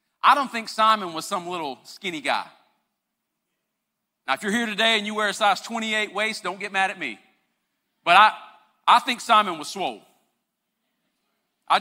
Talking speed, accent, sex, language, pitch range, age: 175 wpm, American, male, English, 220-310 Hz, 40-59